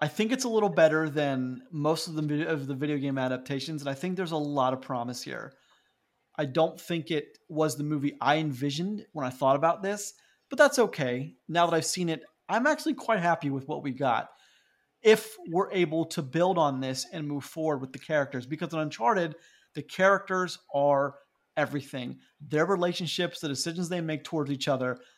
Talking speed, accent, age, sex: 200 wpm, American, 30-49, male